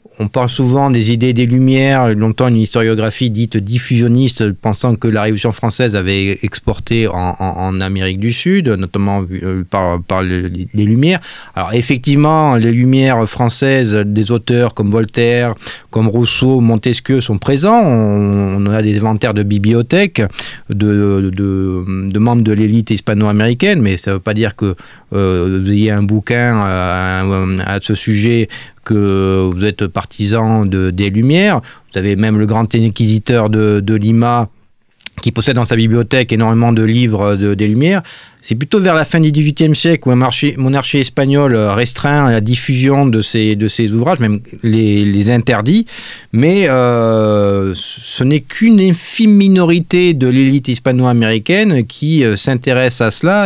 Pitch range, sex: 105-130 Hz, male